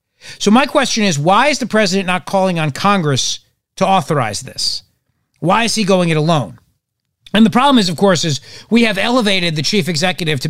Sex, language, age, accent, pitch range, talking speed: male, English, 40-59, American, 150-205 Hz, 200 wpm